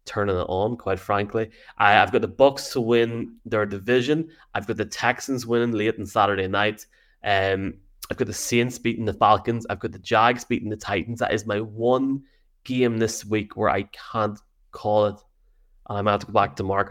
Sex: male